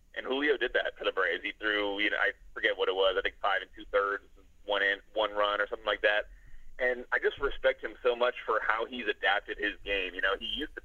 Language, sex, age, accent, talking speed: English, male, 30-49, American, 265 wpm